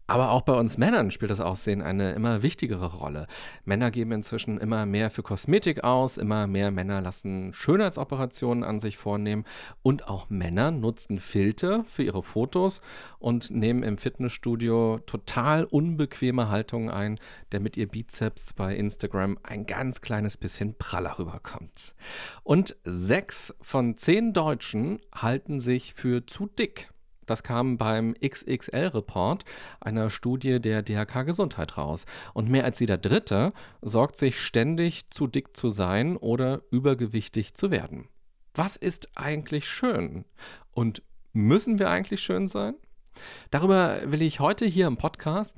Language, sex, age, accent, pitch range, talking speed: German, male, 40-59, German, 105-145 Hz, 140 wpm